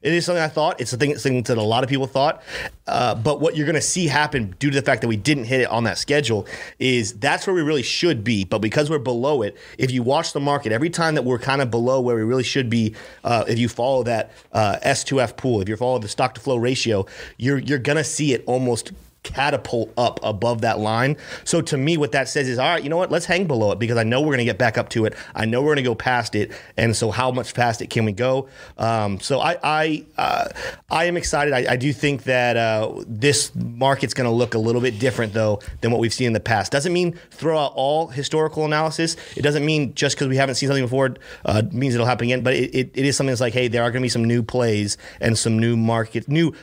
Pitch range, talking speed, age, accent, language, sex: 115-145 Hz, 275 wpm, 30-49, American, English, male